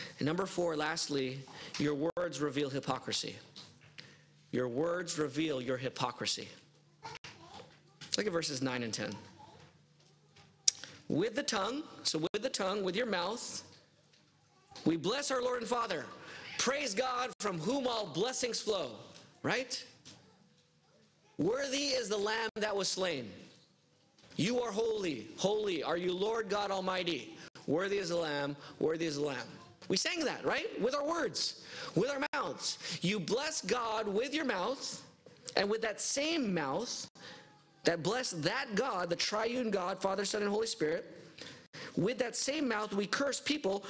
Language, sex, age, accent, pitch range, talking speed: English, male, 40-59, American, 155-240 Hz, 145 wpm